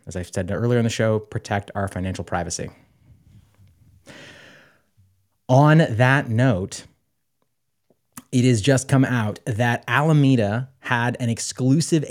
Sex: male